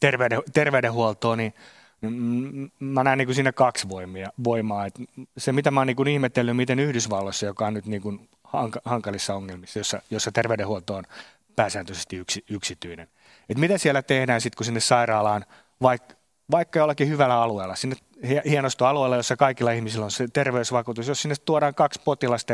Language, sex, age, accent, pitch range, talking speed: Finnish, male, 30-49, native, 110-135 Hz, 135 wpm